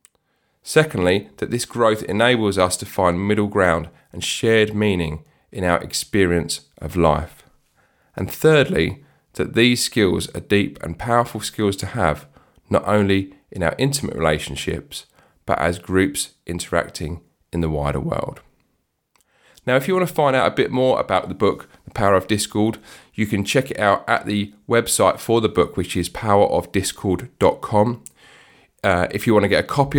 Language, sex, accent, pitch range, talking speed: English, male, British, 90-115 Hz, 165 wpm